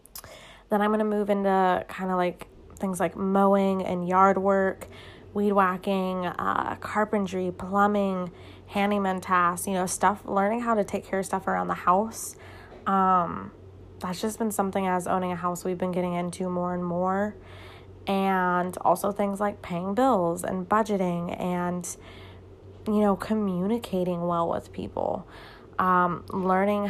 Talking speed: 150 wpm